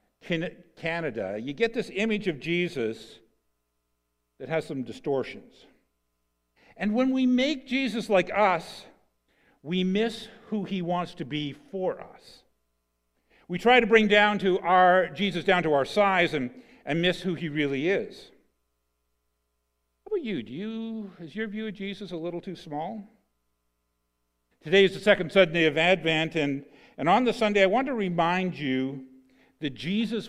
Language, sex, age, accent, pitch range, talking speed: English, male, 50-69, American, 135-200 Hz, 155 wpm